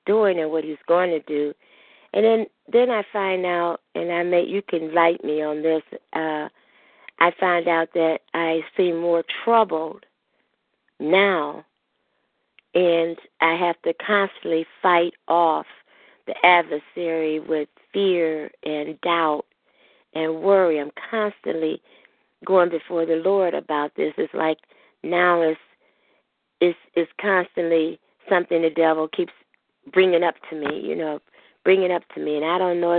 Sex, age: female, 50-69